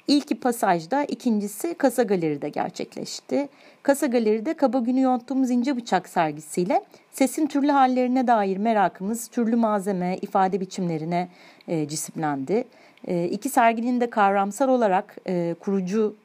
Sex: female